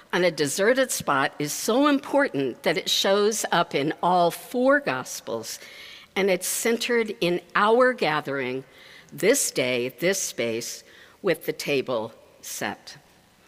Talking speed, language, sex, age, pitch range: 130 wpm, English, female, 60-79, 175-265 Hz